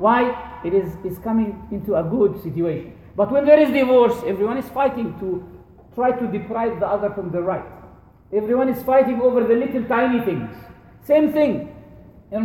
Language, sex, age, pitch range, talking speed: English, male, 50-69, 210-280 Hz, 175 wpm